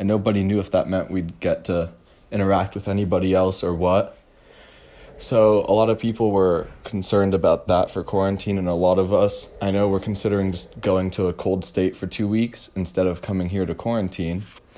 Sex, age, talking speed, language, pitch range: male, 20-39, 205 wpm, English, 95-105 Hz